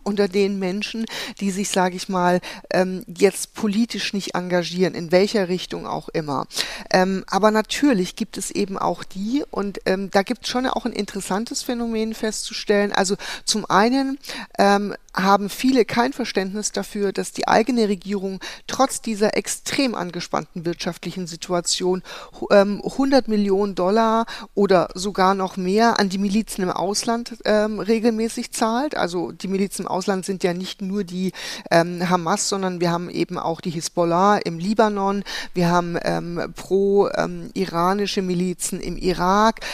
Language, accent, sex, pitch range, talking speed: German, German, female, 185-220 Hz, 145 wpm